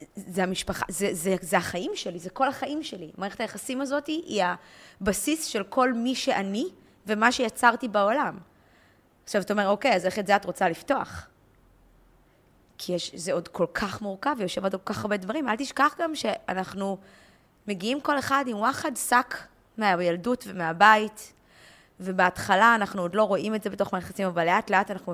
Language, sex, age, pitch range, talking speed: Hebrew, female, 20-39, 180-225 Hz, 175 wpm